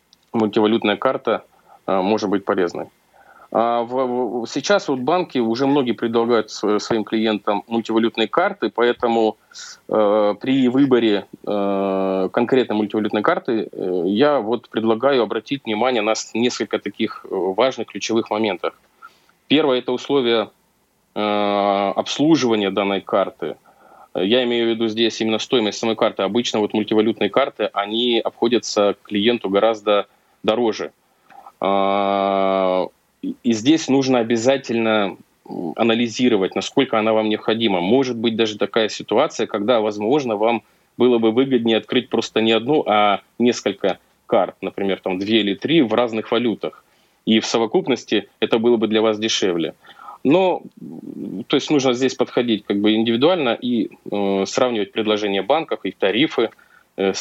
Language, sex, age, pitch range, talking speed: Russian, male, 20-39, 105-125 Hz, 130 wpm